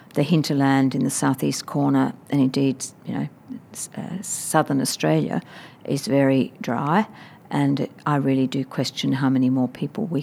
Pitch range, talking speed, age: 135-170 Hz, 160 wpm, 50-69